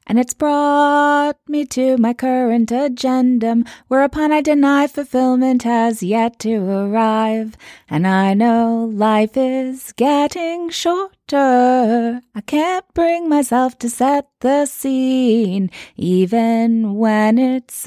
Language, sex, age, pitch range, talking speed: English, female, 20-39, 180-260 Hz, 115 wpm